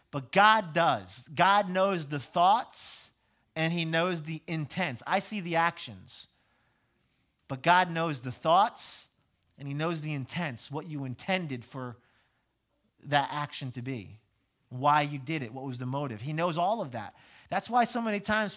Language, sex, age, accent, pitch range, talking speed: English, male, 30-49, American, 150-190 Hz, 170 wpm